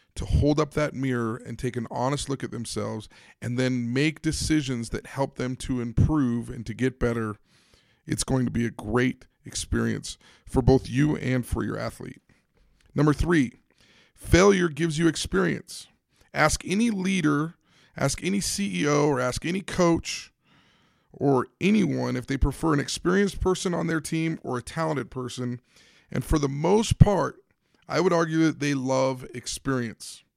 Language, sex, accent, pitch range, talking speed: English, male, American, 125-165 Hz, 160 wpm